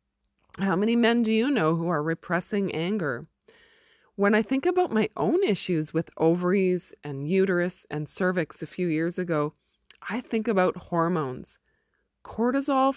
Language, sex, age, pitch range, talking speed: English, female, 20-39, 155-220 Hz, 150 wpm